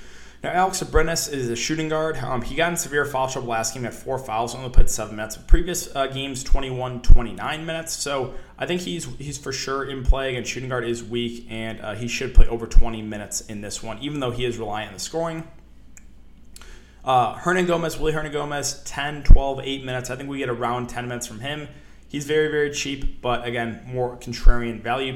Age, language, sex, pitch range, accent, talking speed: 20-39, English, male, 115-150 Hz, American, 210 wpm